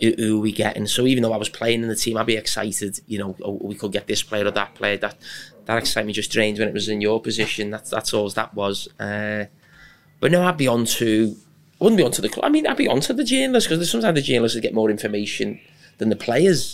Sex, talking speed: male, 260 wpm